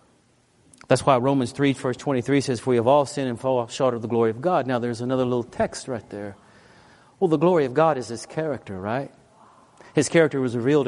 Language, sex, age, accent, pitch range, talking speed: English, male, 40-59, American, 120-155 Hz, 220 wpm